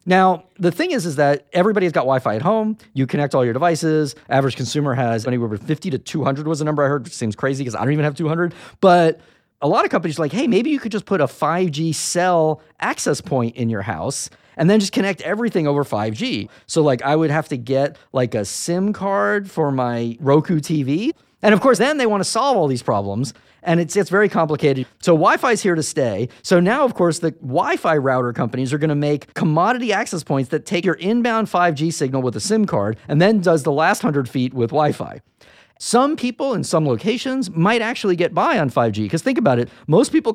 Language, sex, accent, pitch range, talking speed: English, male, American, 135-185 Hz, 235 wpm